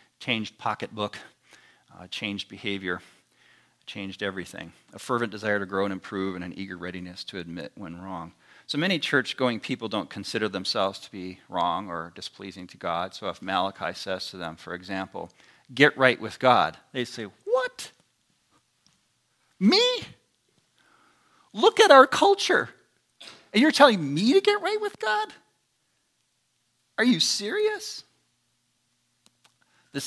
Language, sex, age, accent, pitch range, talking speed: English, male, 40-59, American, 105-150 Hz, 140 wpm